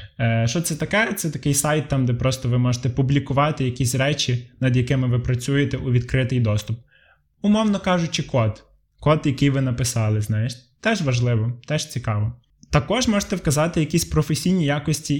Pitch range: 125-155 Hz